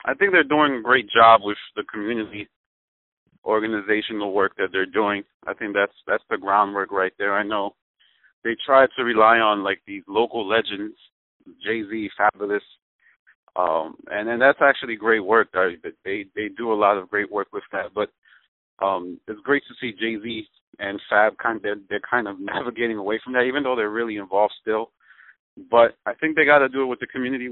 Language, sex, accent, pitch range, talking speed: English, male, American, 105-130 Hz, 200 wpm